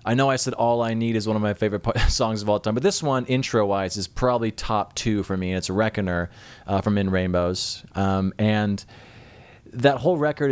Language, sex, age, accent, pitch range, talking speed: English, male, 30-49, American, 100-120 Hz, 220 wpm